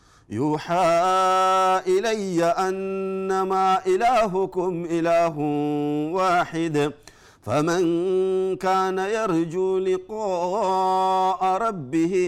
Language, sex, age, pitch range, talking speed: Amharic, male, 50-69, 150-210 Hz, 55 wpm